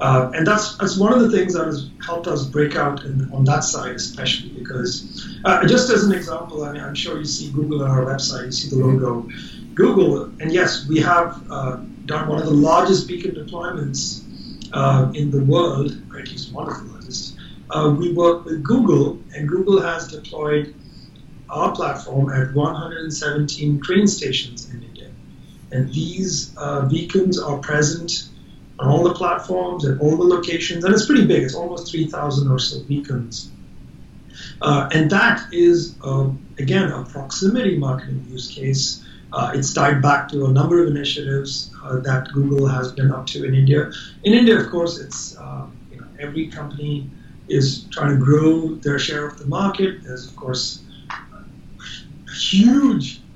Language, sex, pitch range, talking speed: English, male, 135-170 Hz, 170 wpm